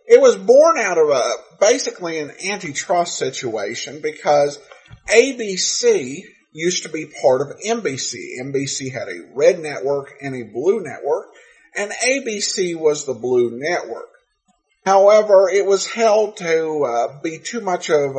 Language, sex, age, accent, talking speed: English, male, 50-69, American, 140 wpm